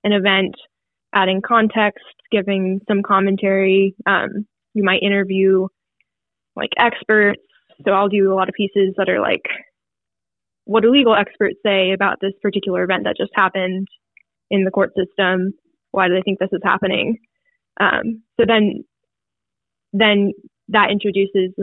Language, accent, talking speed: English, American, 145 wpm